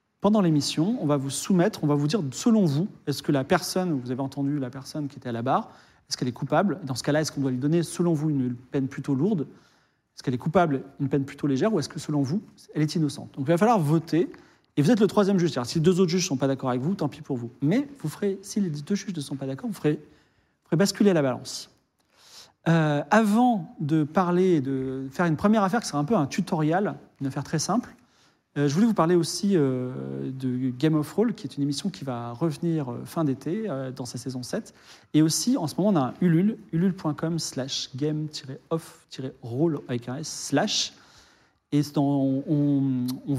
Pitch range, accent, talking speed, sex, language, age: 135-175 Hz, French, 235 wpm, male, French, 40-59